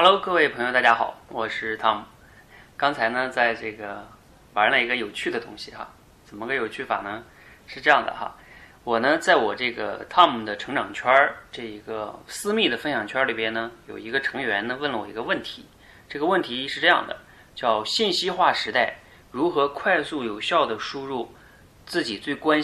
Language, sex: Chinese, male